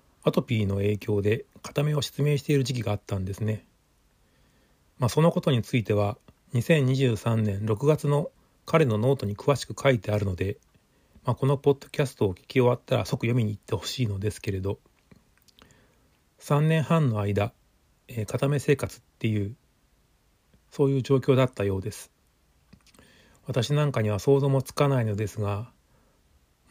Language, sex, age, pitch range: Japanese, male, 40-59, 105-135 Hz